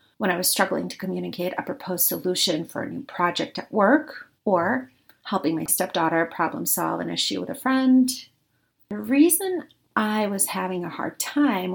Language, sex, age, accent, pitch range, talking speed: English, female, 40-59, American, 185-275 Hz, 175 wpm